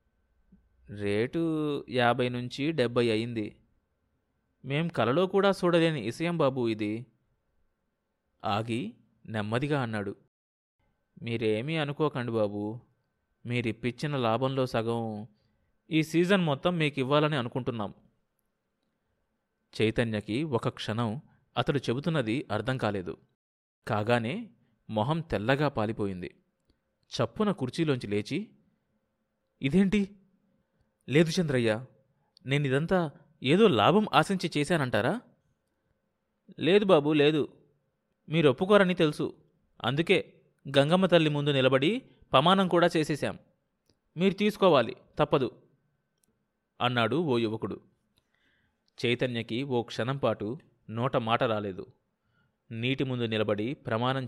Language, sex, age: Telugu, male, 30-49